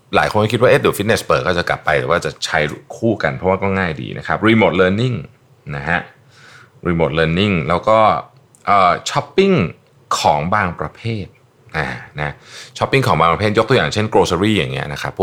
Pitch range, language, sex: 75-110 Hz, Thai, male